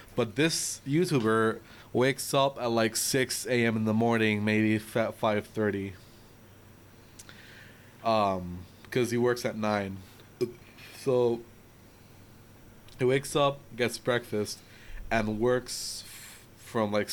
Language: English